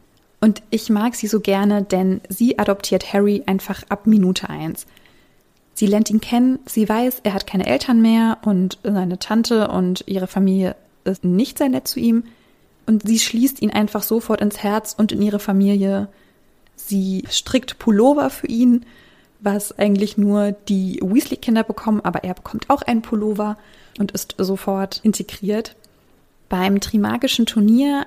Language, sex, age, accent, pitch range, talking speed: German, female, 20-39, German, 195-225 Hz, 155 wpm